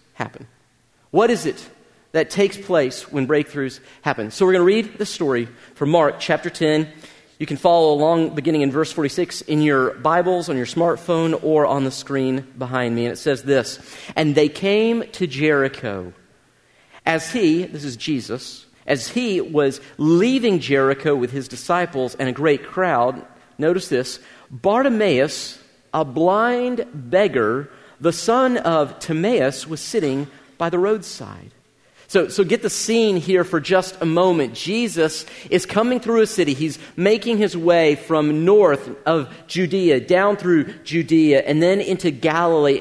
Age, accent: 40-59, American